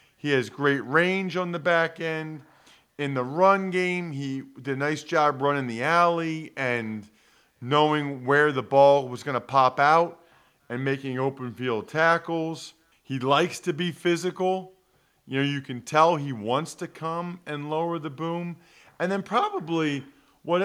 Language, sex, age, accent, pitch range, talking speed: English, male, 40-59, American, 135-180 Hz, 165 wpm